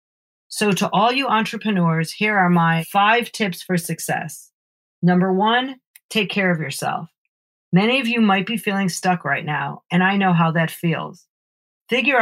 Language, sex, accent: English, female, American